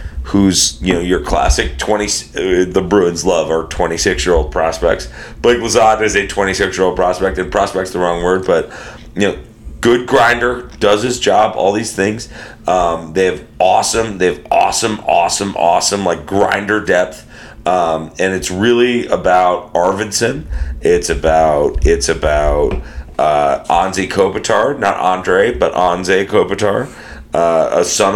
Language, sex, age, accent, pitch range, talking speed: English, male, 40-59, American, 80-100 Hz, 160 wpm